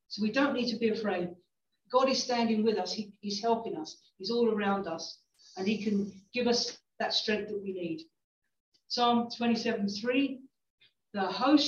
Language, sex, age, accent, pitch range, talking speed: English, female, 50-69, British, 200-240 Hz, 175 wpm